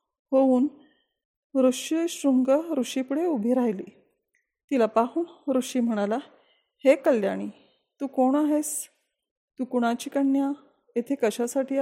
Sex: female